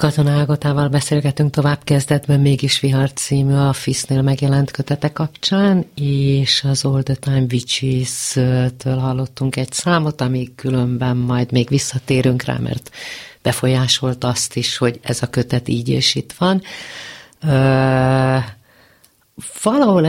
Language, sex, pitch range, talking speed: Hungarian, female, 130-150 Hz, 115 wpm